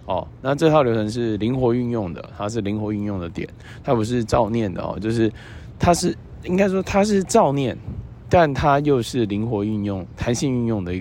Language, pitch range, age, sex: Chinese, 105-135 Hz, 20-39, male